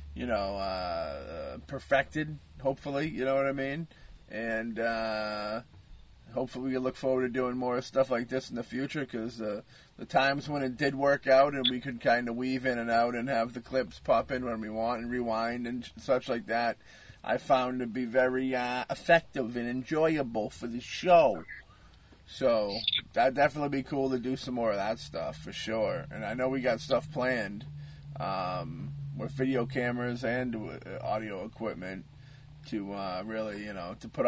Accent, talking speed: American, 185 wpm